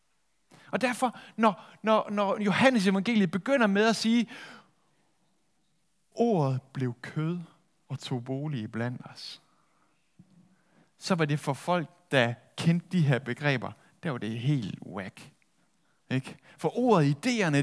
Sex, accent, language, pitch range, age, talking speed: male, native, Danish, 145-185 Hz, 60-79, 125 wpm